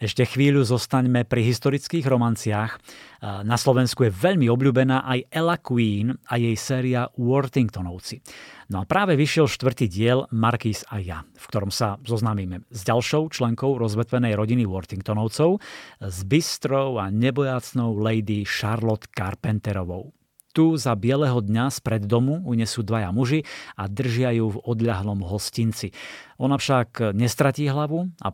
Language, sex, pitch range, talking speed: Slovak, male, 110-135 Hz, 135 wpm